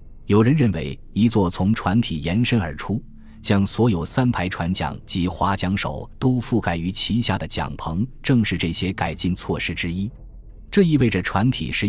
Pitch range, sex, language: 85-115 Hz, male, Chinese